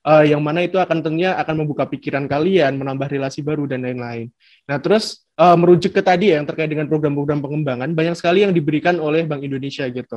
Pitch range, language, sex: 145-170 Hz, Indonesian, male